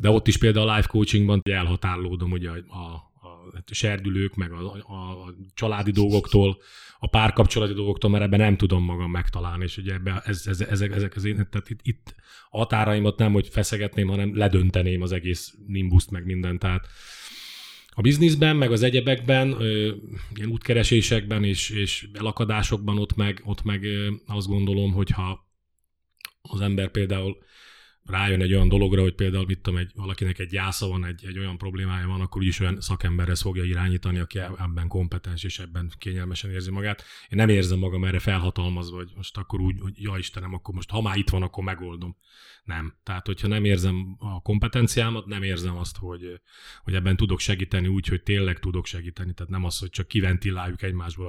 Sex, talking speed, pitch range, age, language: male, 170 wpm, 90-105 Hz, 30-49, Hungarian